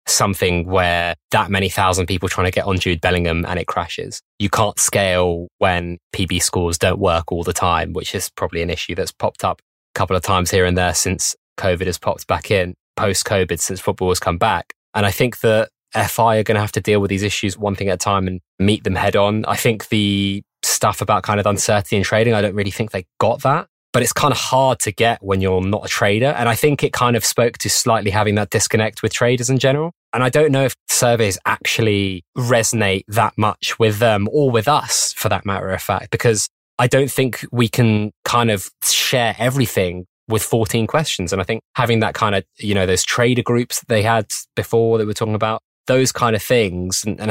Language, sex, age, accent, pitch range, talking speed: English, male, 20-39, British, 95-115 Hz, 230 wpm